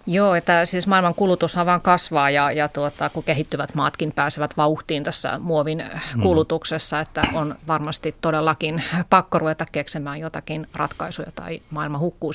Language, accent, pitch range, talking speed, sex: Finnish, native, 150-180 Hz, 145 wpm, female